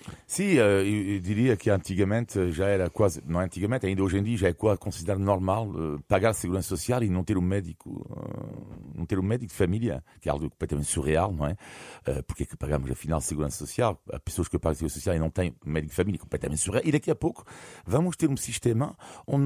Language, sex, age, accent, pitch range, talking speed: Portuguese, male, 50-69, French, 85-110 Hz, 220 wpm